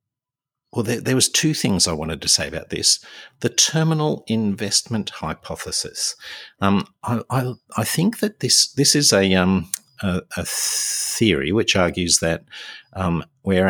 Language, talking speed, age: English, 155 wpm, 50-69